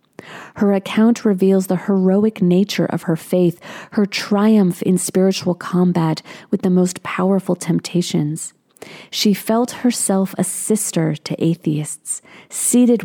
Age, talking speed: 30-49, 125 wpm